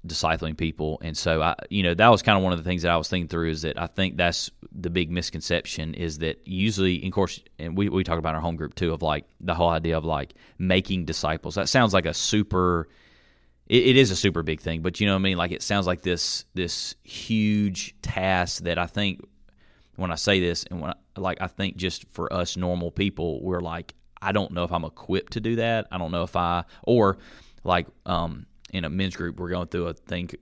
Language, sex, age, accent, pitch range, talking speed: English, male, 30-49, American, 80-95 Hz, 245 wpm